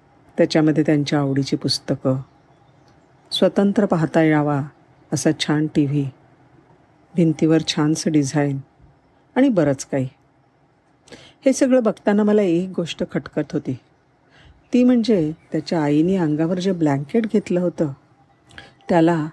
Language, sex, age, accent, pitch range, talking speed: Marathi, female, 50-69, native, 145-180 Hz, 110 wpm